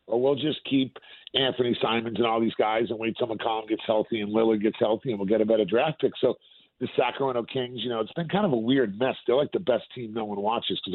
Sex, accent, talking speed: male, American, 270 wpm